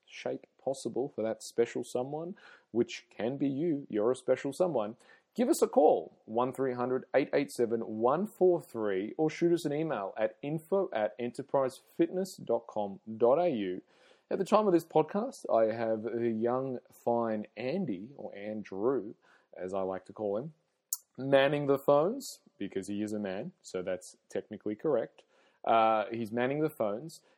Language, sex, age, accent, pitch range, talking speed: English, male, 30-49, Australian, 110-150 Hz, 150 wpm